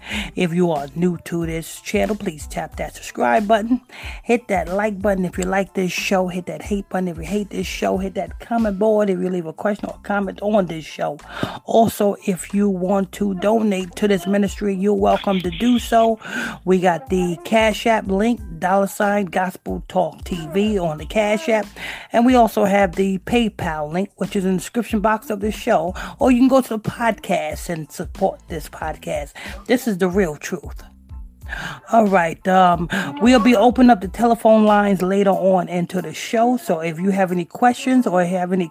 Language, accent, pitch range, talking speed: English, American, 180-220 Hz, 200 wpm